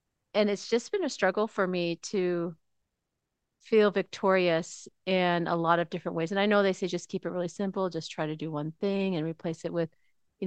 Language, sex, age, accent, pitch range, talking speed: English, female, 40-59, American, 170-205 Hz, 220 wpm